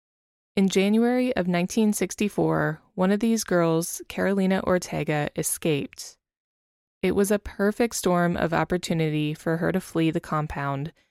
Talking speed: 130 wpm